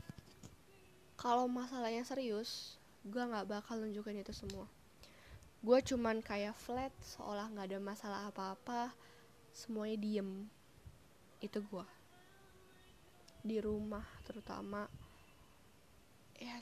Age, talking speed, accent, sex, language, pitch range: 10-29, 95 wpm, native, female, Indonesian, 195-245 Hz